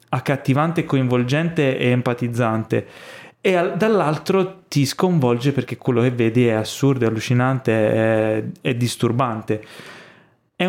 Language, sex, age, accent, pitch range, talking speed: Italian, male, 20-39, native, 115-145 Hz, 105 wpm